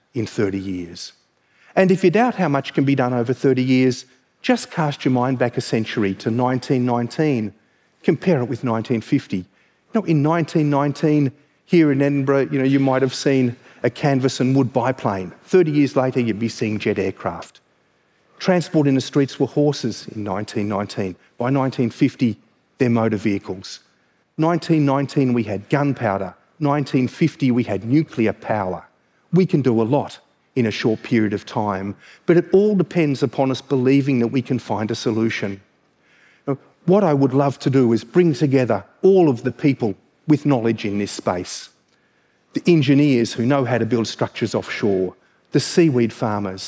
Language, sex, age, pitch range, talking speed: Arabic, male, 40-59, 115-145 Hz, 165 wpm